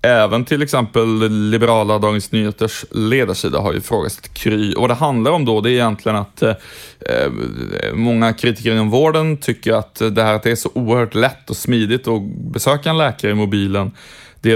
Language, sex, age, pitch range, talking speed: Swedish, male, 20-39, 105-125 Hz, 175 wpm